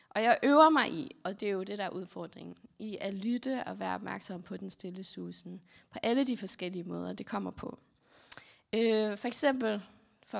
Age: 20-39